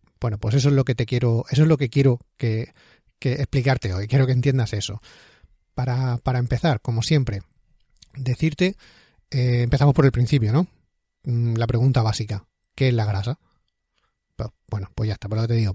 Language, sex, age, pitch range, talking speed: Spanish, male, 30-49, 115-145 Hz, 190 wpm